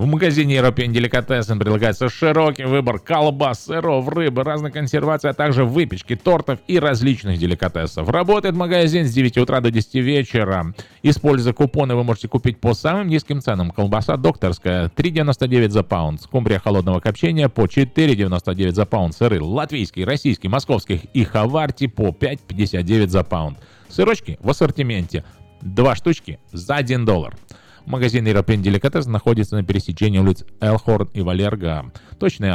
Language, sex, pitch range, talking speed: Russian, male, 95-140 Hz, 140 wpm